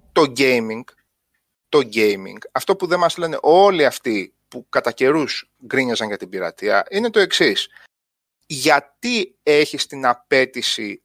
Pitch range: 130-210 Hz